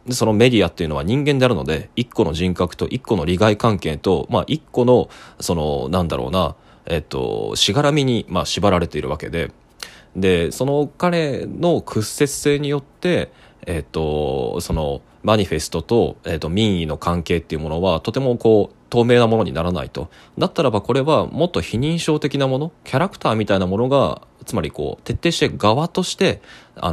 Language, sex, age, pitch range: Japanese, male, 20-39, 85-135 Hz